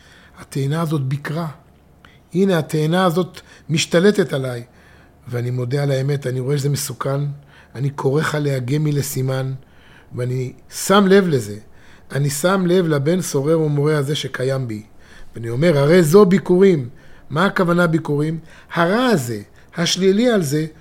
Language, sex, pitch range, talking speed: Hebrew, male, 145-220 Hz, 135 wpm